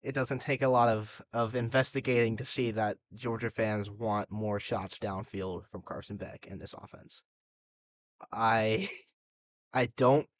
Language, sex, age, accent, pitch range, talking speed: English, male, 10-29, American, 105-120 Hz, 150 wpm